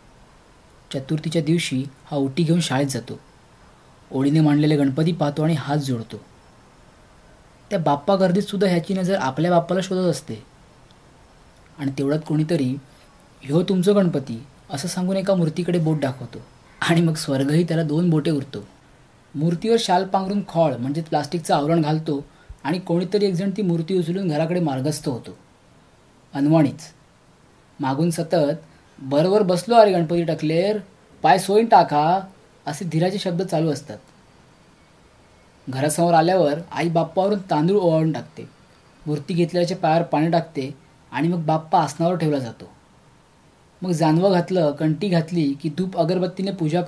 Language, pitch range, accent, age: Marathi, 145-180 Hz, native, 20-39